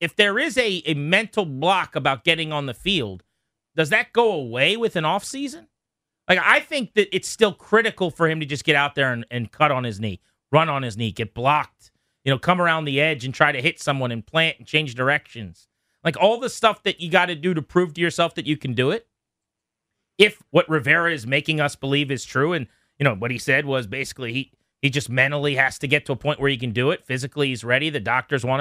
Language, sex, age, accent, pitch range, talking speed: English, male, 30-49, American, 135-185 Hz, 245 wpm